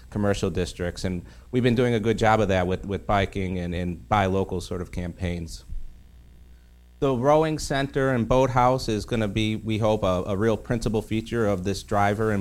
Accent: American